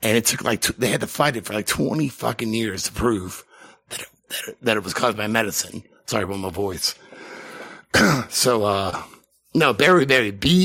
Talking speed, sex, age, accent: 185 wpm, male, 50-69, American